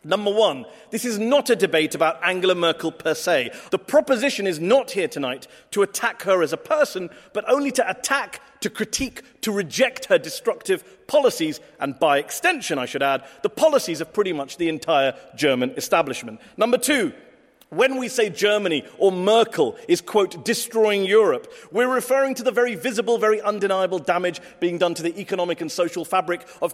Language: English